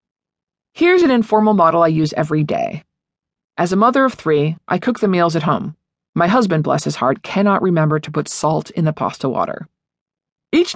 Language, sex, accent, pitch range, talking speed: English, female, American, 165-220 Hz, 190 wpm